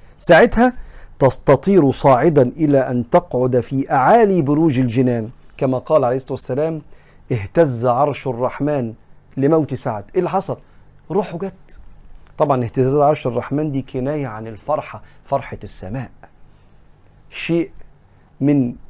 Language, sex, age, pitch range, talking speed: Arabic, male, 40-59, 120-145 Hz, 115 wpm